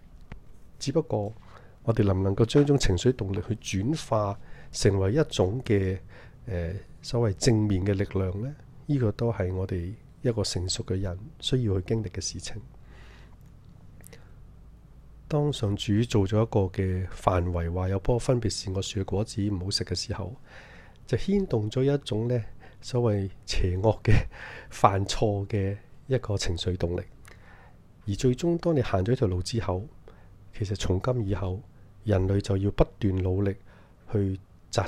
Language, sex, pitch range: Chinese, male, 95-125 Hz